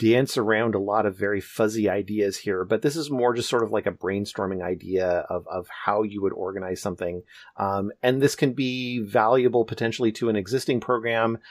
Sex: male